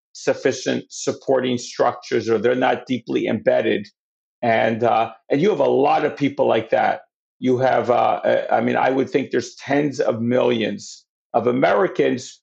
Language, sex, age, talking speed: English, male, 50-69, 160 wpm